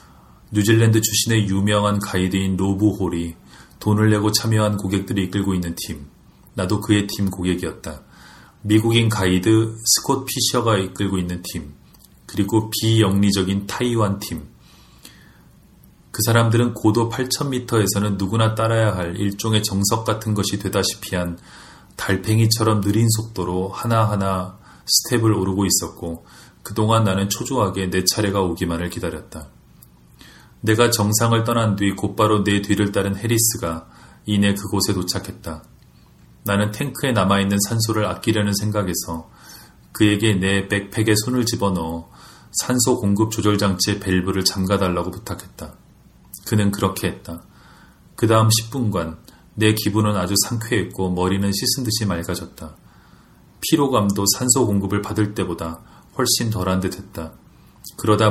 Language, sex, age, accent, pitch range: Korean, male, 30-49, native, 95-110 Hz